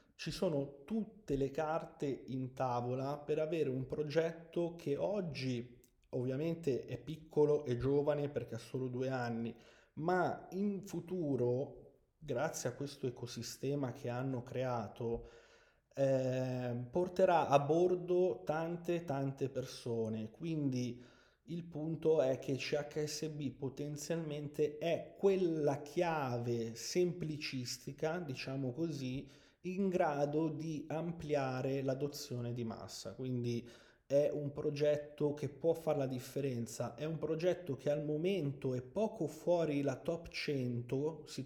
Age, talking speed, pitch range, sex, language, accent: 30-49, 120 wpm, 130-165 Hz, male, Italian, native